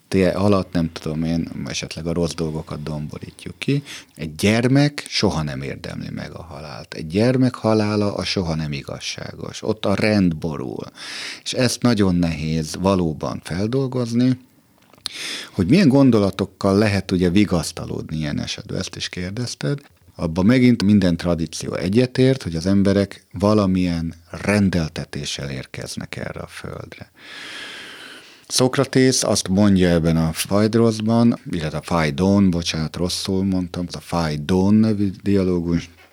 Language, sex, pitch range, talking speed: Hungarian, male, 80-105 Hz, 130 wpm